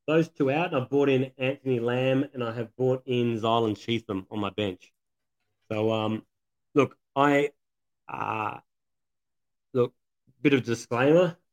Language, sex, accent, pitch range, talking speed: English, male, Australian, 105-130 Hz, 145 wpm